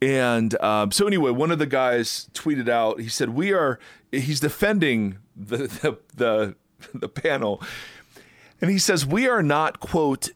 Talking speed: 160 wpm